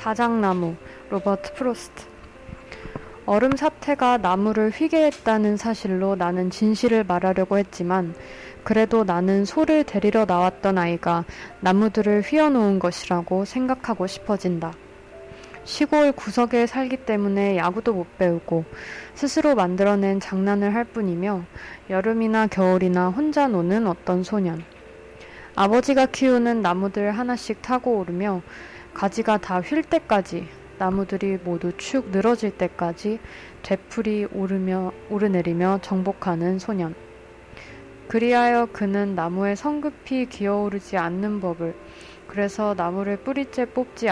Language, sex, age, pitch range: Korean, female, 20-39, 185-230 Hz